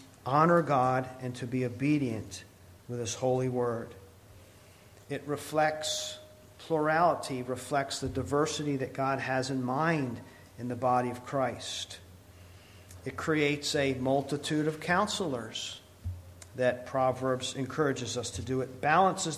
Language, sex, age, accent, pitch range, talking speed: English, male, 50-69, American, 120-160 Hz, 125 wpm